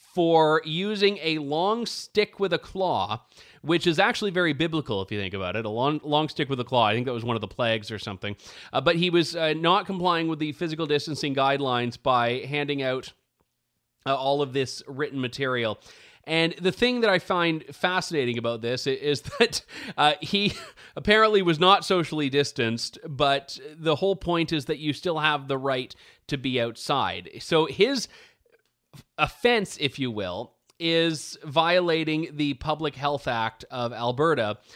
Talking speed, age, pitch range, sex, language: 175 wpm, 30-49, 130-180 Hz, male, English